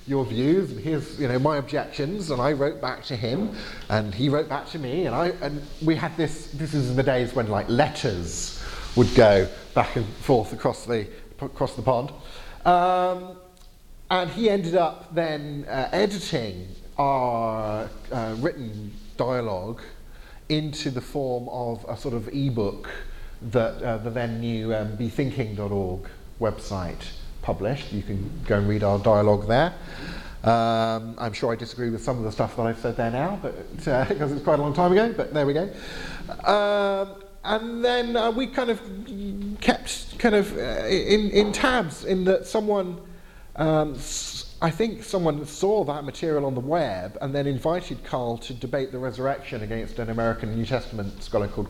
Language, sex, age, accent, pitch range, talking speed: English, male, 40-59, British, 115-170 Hz, 175 wpm